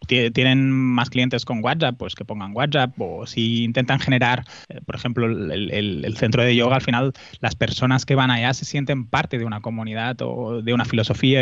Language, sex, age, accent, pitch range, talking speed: Spanish, male, 20-39, Spanish, 115-130 Hz, 195 wpm